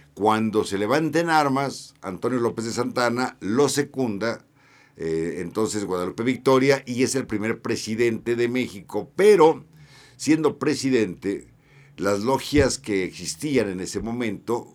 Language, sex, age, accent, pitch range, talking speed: Spanish, male, 60-79, Mexican, 95-125 Hz, 125 wpm